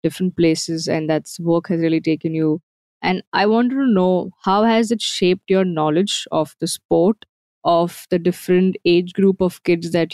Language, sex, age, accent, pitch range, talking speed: English, female, 20-39, Indian, 155-180 Hz, 185 wpm